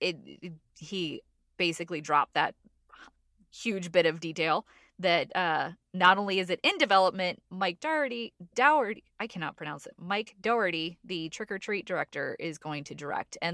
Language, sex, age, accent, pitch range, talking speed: English, female, 20-39, American, 170-250 Hz, 160 wpm